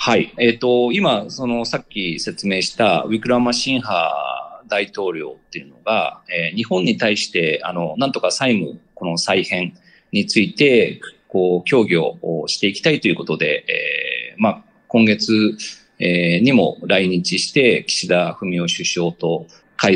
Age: 40-59